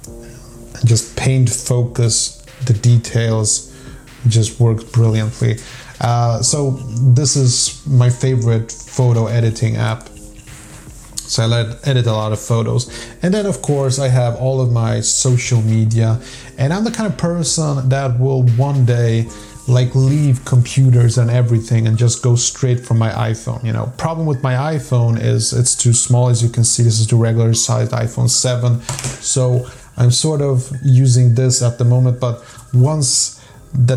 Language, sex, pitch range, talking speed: English, male, 115-130 Hz, 160 wpm